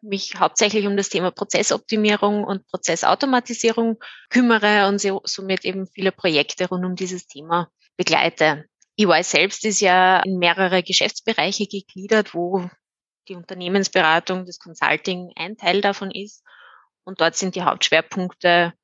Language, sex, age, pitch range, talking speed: German, female, 20-39, 170-205 Hz, 130 wpm